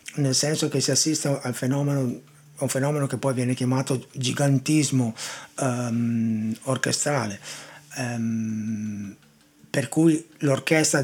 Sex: male